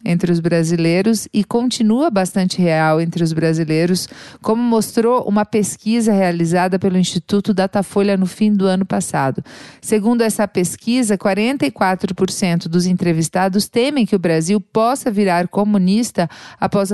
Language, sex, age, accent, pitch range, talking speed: Portuguese, female, 40-59, Brazilian, 175-220 Hz, 130 wpm